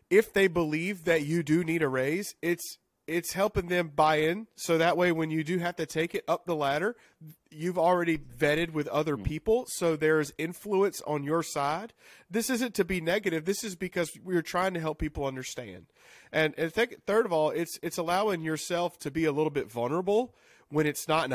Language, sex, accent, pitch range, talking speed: English, male, American, 150-180 Hz, 205 wpm